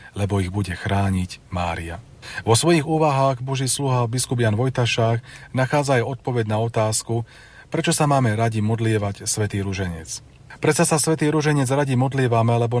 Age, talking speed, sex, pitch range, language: 40-59, 150 wpm, male, 105-130 Hz, Slovak